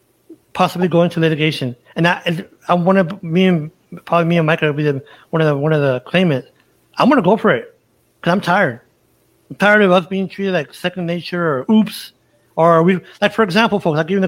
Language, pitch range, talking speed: English, 160-200 Hz, 220 wpm